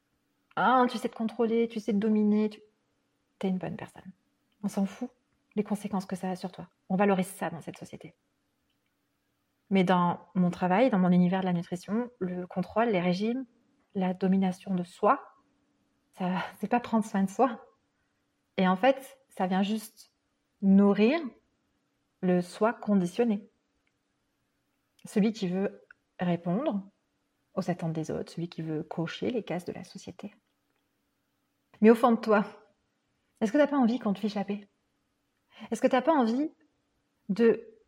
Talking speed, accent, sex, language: 165 wpm, French, female, French